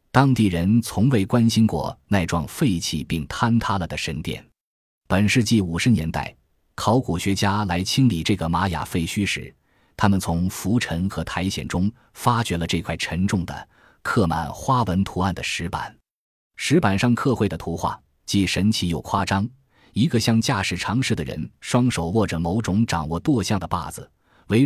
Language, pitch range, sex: Chinese, 85-115 Hz, male